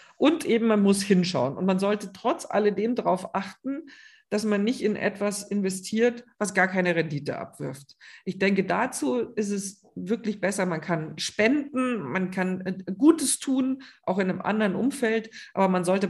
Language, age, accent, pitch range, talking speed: German, 50-69, German, 180-220 Hz, 170 wpm